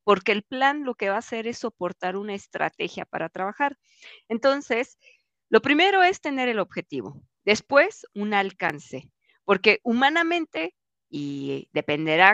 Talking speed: 135 wpm